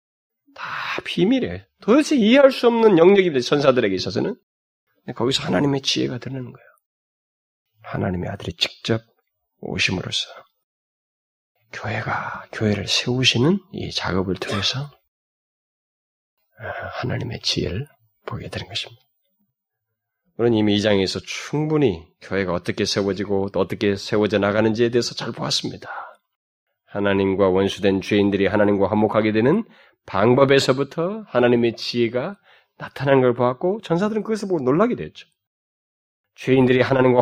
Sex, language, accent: male, Korean, native